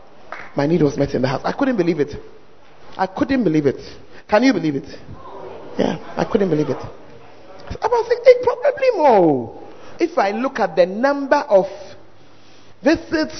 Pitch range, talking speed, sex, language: 215-320 Hz, 165 wpm, male, English